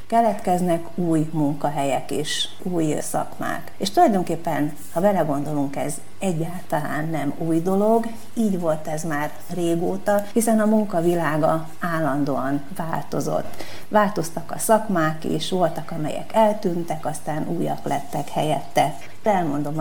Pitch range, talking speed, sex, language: 160-210 Hz, 115 wpm, female, Hungarian